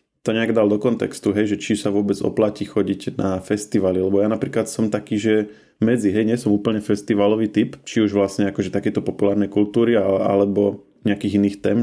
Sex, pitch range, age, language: male, 95-105 Hz, 20-39, Slovak